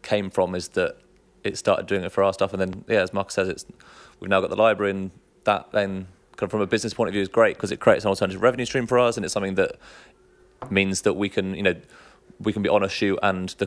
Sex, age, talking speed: male, 20-39, 275 wpm